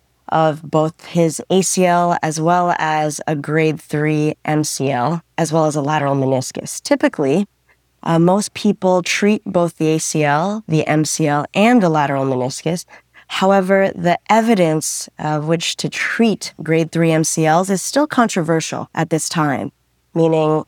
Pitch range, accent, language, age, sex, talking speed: 150-175 Hz, American, English, 20-39, female, 140 wpm